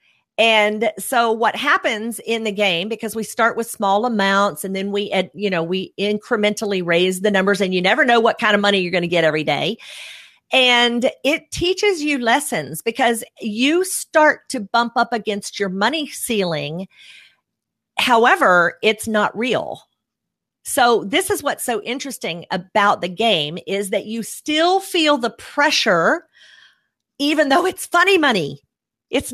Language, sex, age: English, female, 50-69